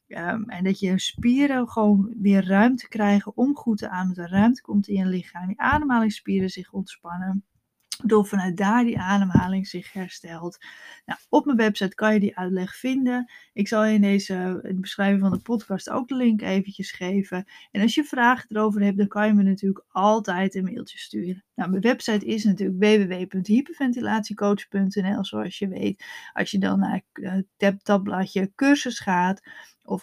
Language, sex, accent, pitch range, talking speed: Dutch, female, Dutch, 190-230 Hz, 175 wpm